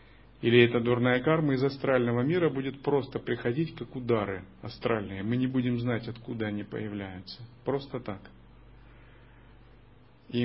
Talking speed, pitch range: 130 wpm, 110-130 Hz